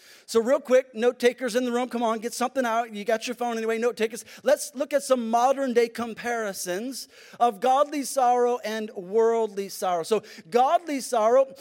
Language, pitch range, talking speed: English, 220-250 Hz, 185 wpm